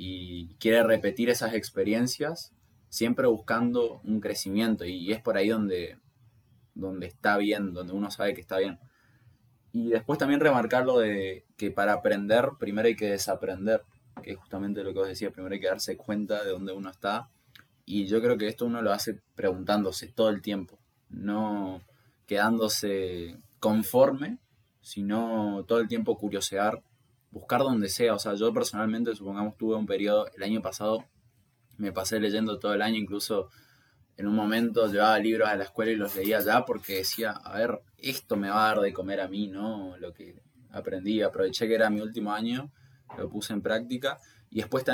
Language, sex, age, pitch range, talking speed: Spanish, male, 20-39, 100-115 Hz, 180 wpm